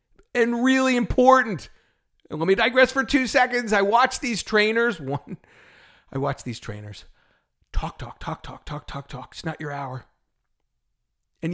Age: 40-59